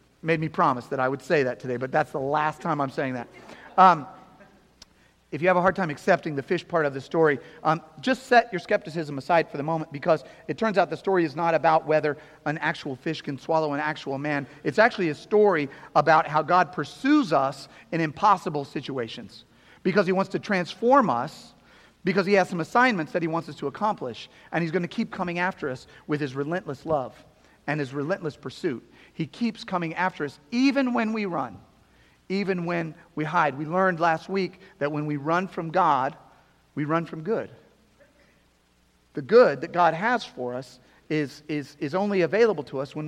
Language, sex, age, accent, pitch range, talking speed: English, male, 40-59, American, 150-190 Hz, 200 wpm